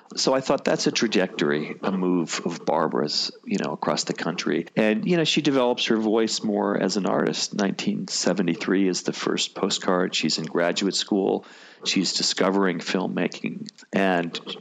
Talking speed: 160 wpm